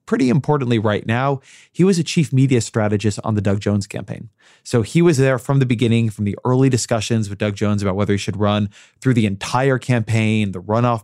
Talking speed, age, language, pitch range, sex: 215 wpm, 20-39, English, 105-125 Hz, male